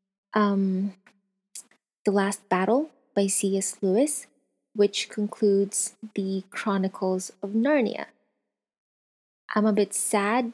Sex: female